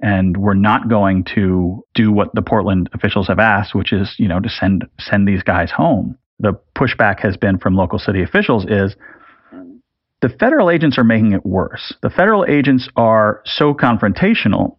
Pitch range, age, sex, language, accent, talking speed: 95-125 Hz, 40-59, male, English, American, 170 wpm